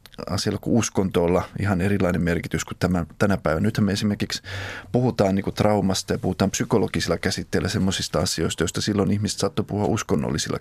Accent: native